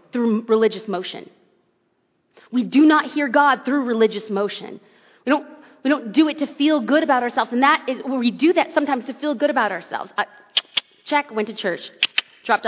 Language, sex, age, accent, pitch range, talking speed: English, female, 30-49, American, 220-305 Hz, 185 wpm